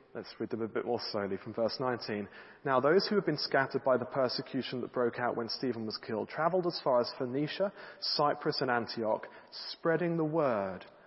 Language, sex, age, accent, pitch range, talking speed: English, male, 40-59, British, 130-190 Hz, 200 wpm